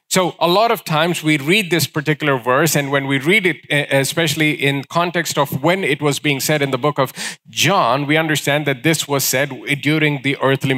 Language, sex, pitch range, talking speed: English, male, 145-180 Hz, 210 wpm